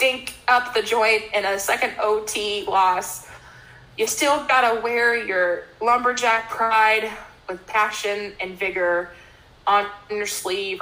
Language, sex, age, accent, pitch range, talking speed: English, female, 20-39, American, 190-215 Hz, 130 wpm